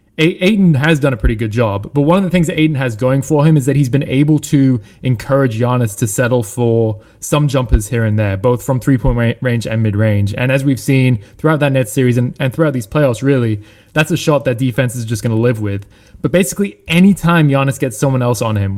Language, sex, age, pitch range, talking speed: English, male, 20-39, 115-150 Hz, 240 wpm